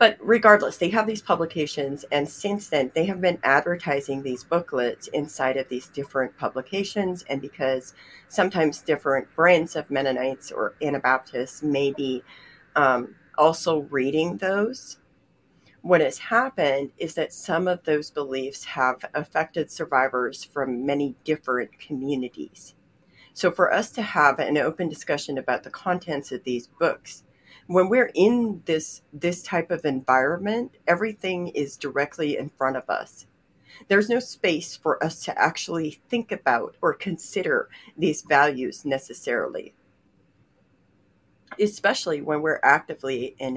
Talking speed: 135 wpm